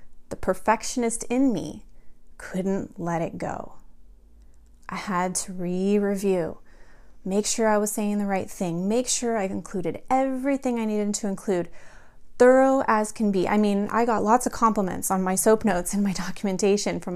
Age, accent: 30-49, American